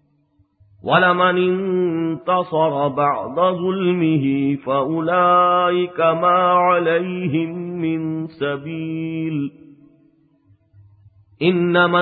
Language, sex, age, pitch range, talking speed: English, male, 50-69, 145-175 Hz, 50 wpm